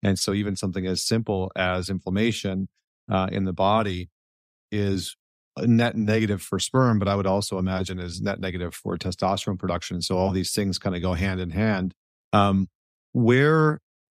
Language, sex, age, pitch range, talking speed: English, male, 40-59, 95-110 Hz, 170 wpm